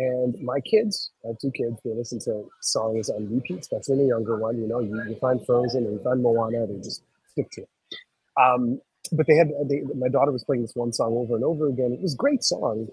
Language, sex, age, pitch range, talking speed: English, male, 30-49, 115-155 Hz, 245 wpm